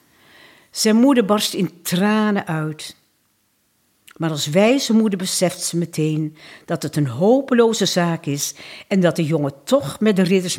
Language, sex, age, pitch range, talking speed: Dutch, female, 60-79, 145-225 Hz, 155 wpm